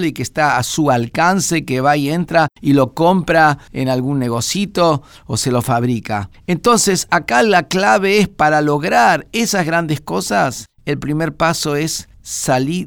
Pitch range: 125-170 Hz